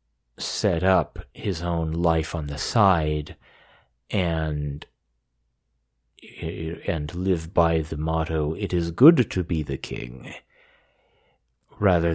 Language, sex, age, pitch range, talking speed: English, male, 30-49, 80-100 Hz, 110 wpm